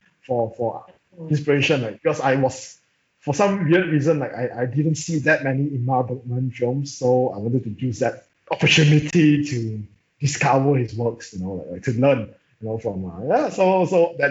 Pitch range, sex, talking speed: 115-150 Hz, male, 195 wpm